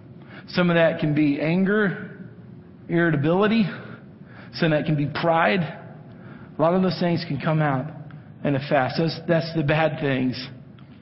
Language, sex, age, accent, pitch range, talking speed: English, male, 50-69, American, 150-190 Hz, 160 wpm